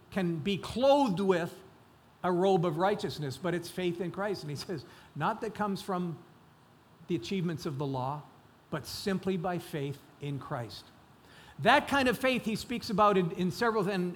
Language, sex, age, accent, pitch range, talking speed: English, male, 50-69, American, 170-205 Hz, 180 wpm